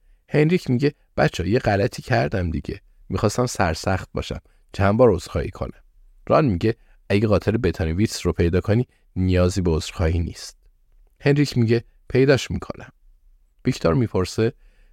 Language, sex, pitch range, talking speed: Persian, male, 85-110 Hz, 130 wpm